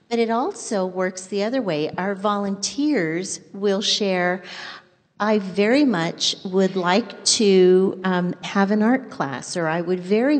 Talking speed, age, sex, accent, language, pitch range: 150 wpm, 50-69, female, American, English, 170-210 Hz